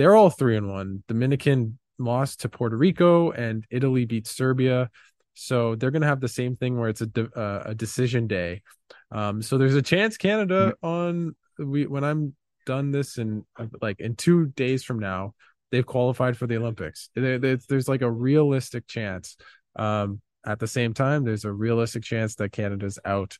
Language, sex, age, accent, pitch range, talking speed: English, male, 20-39, American, 105-130 Hz, 185 wpm